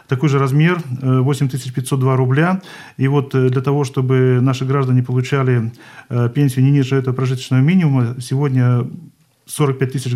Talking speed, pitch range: 135 wpm, 130-150 Hz